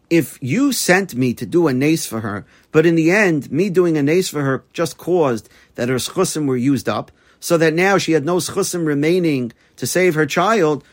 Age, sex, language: 40-59, male, English